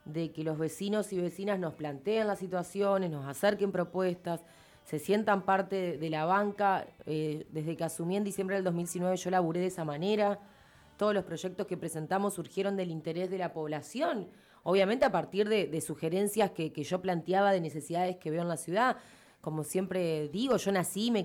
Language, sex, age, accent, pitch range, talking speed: Spanish, female, 20-39, Argentinian, 160-195 Hz, 185 wpm